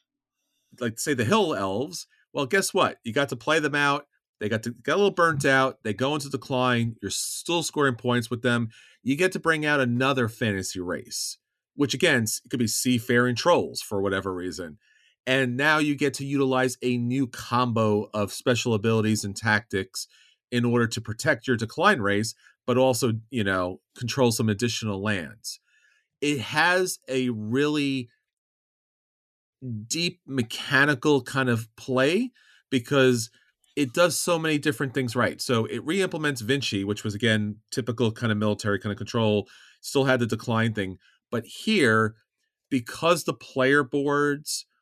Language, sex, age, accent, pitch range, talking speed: English, male, 40-59, American, 110-140 Hz, 160 wpm